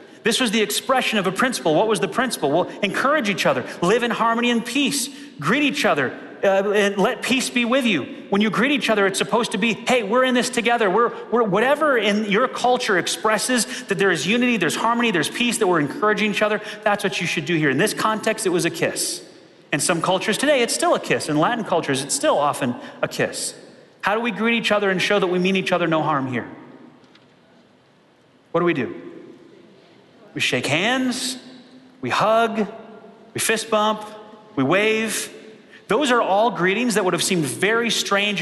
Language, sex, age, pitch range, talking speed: English, male, 30-49, 170-230 Hz, 210 wpm